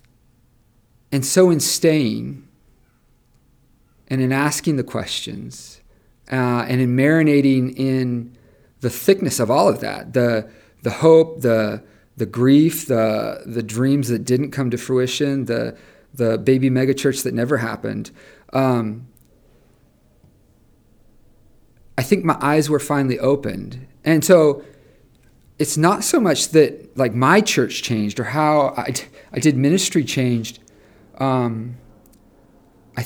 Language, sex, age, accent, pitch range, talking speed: English, male, 40-59, American, 115-140 Hz, 125 wpm